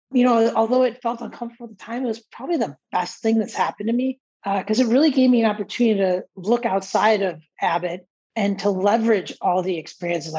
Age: 40-59